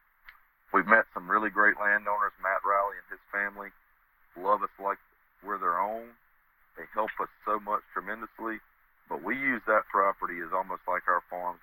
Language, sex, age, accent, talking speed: English, male, 40-59, American, 170 wpm